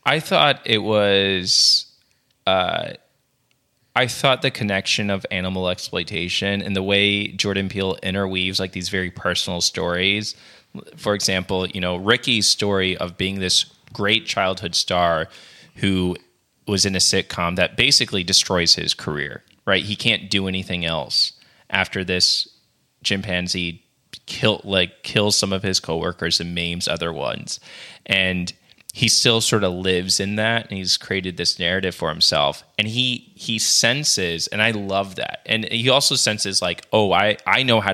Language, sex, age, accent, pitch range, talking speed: English, male, 20-39, American, 90-105 Hz, 155 wpm